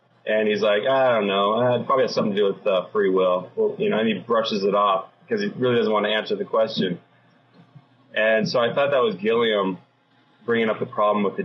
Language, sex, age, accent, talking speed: English, male, 30-49, American, 235 wpm